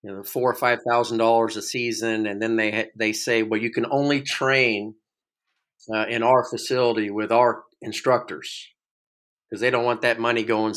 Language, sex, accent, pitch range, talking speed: English, male, American, 110-125 Hz, 185 wpm